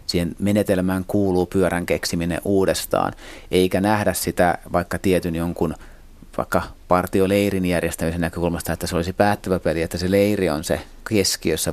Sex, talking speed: male, 140 wpm